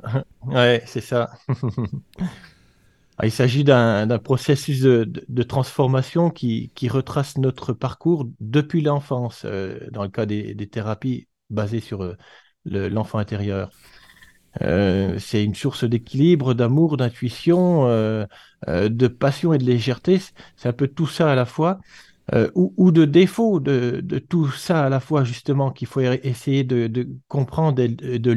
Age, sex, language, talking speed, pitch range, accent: 40-59, male, French, 160 wpm, 110-145 Hz, French